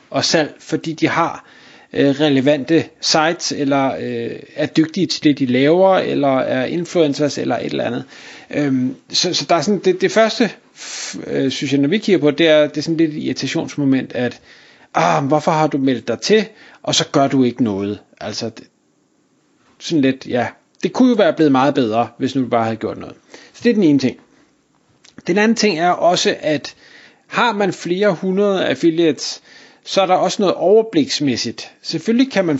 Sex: male